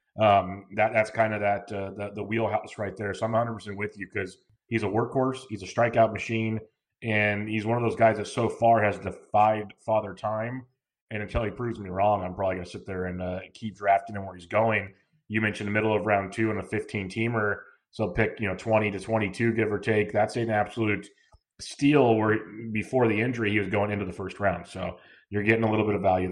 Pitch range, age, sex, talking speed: 100-115 Hz, 30-49, male, 230 wpm